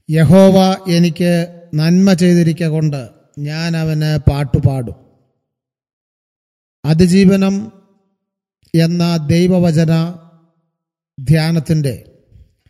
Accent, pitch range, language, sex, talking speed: native, 155-180 Hz, Malayalam, male, 50 wpm